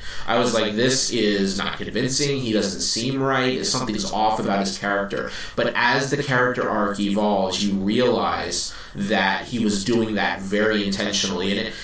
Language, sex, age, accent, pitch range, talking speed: English, male, 30-49, American, 100-120 Hz, 165 wpm